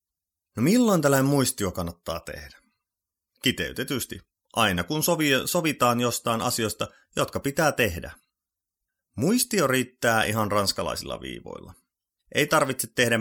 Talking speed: 110 wpm